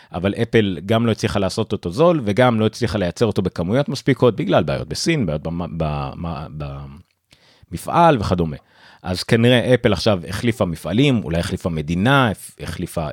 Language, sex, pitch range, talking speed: Hebrew, male, 85-120 Hz, 140 wpm